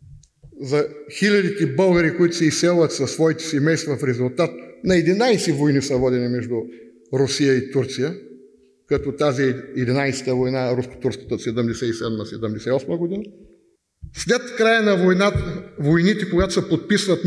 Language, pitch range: Bulgarian, 145-200 Hz